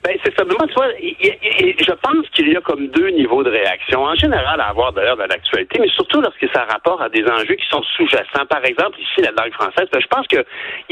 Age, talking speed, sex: 60-79, 265 wpm, male